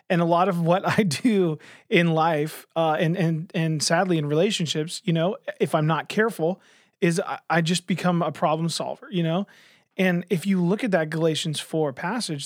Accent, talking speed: American, 195 wpm